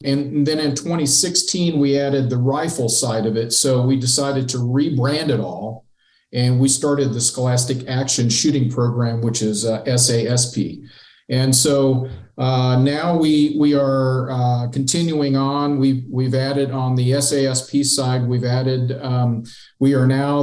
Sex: male